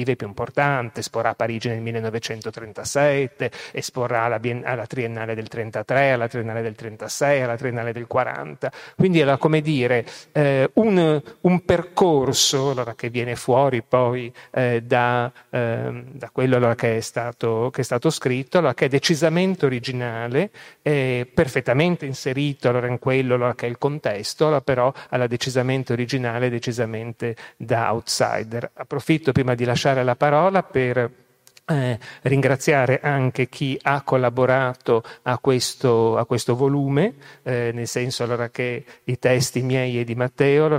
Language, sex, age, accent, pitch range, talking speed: Italian, male, 40-59, native, 120-140 Hz, 145 wpm